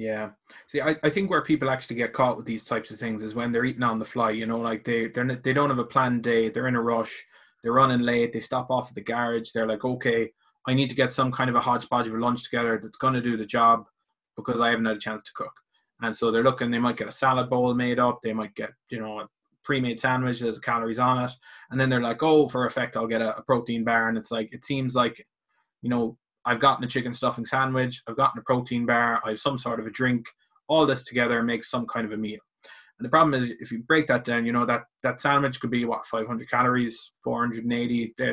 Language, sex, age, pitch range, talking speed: English, male, 20-39, 115-130 Hz, 260 wpm